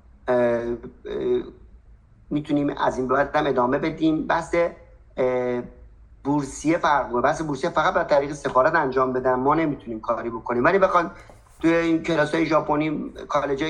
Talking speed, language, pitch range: 125 wpm, Persian, 130-165 Hz